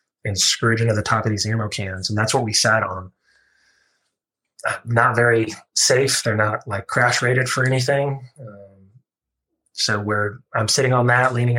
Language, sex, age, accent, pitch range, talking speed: English, male, 20-39, American, 100-120 Hz, 170 wpm